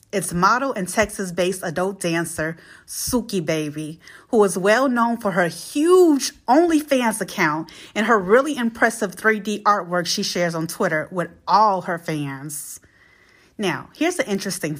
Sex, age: female, 30-49